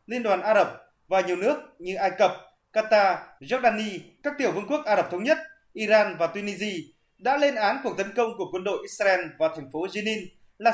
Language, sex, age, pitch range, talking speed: Vietnamese, male, 20-39, 185-240 Hz, 210 wpm